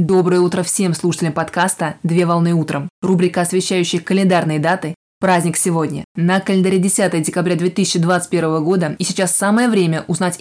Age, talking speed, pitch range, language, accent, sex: 20-39, 145 wpm, 170-190 Hz, Russian, native, female